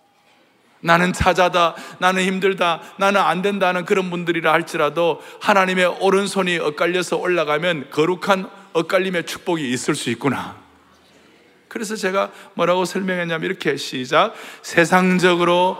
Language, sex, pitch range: Korean, male, 140-185 Hz